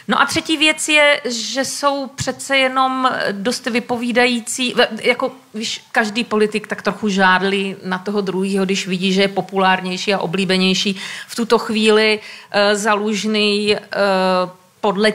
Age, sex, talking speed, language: 40-59, female, 140 wpm, Slovak